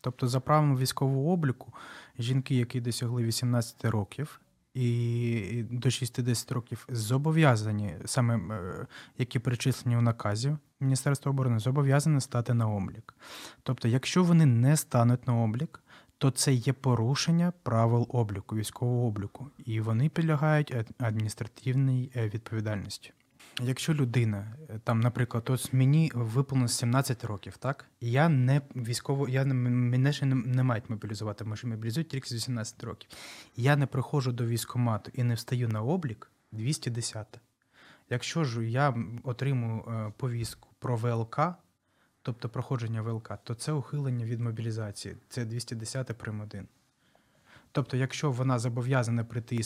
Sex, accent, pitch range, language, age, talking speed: male, native, 115-135 Hz, Ukrainian, 20-39, 125 wpm